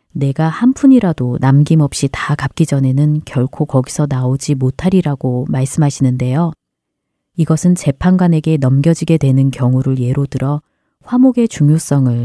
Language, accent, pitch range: Korean, native, 130-175 Hz